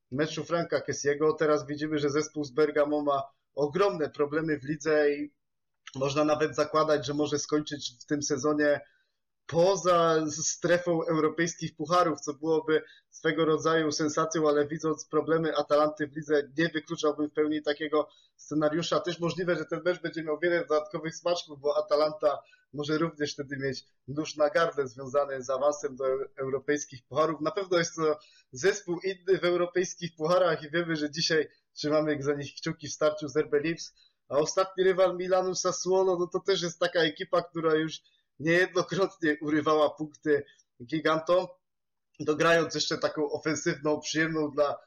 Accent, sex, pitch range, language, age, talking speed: native, male, 145-165 Hz, Polish, 20-39, 155 wpm